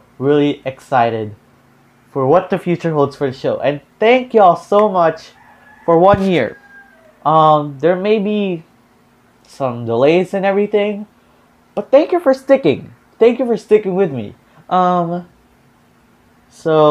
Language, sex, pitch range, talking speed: English, male, 145-205 Hz, 140 wpm